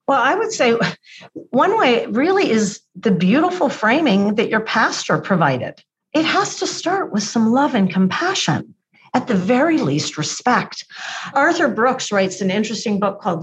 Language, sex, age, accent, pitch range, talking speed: English, female, 50-69, American, 175-285 Hz, 160 wpm